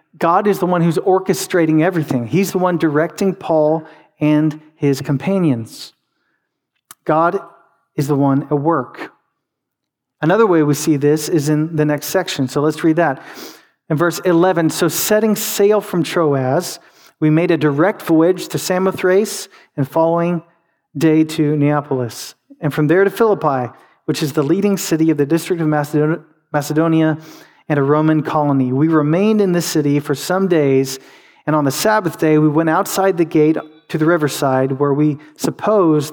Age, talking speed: 40-59, 165 wpm